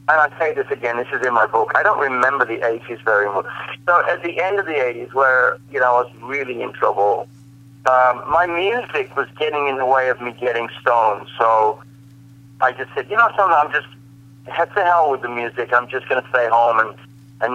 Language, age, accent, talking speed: English, 40-59, American, 225 wpm